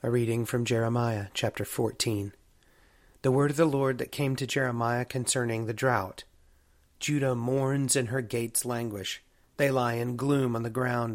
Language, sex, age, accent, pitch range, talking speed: English, male, 30-49, American, 115-135 Hz, 165 wpm